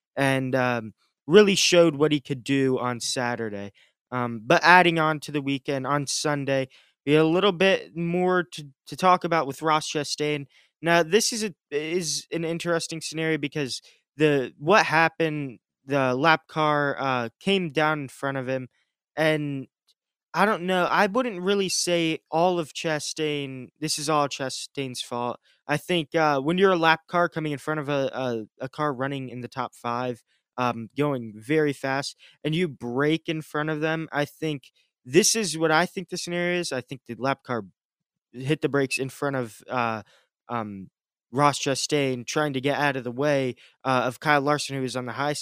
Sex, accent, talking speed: male, American, 190 wpm